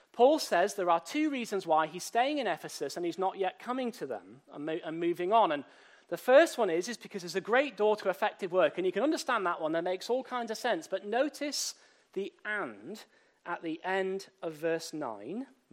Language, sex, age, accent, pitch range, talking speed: English, male, 40-59, British, 185-295 Hz, 220 wpm